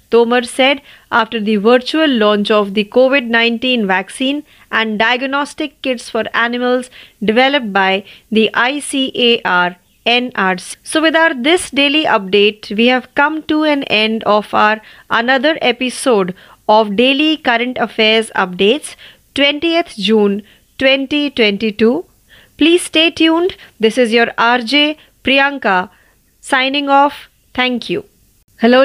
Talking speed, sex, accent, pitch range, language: 115 wpm, female, native, 220-285 Hz, Marathi